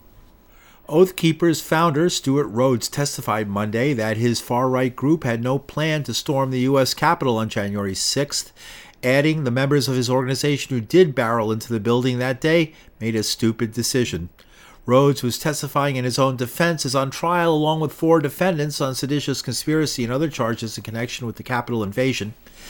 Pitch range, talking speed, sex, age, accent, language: 115-145 Hz, 175 wpm, male, 50-69, American, English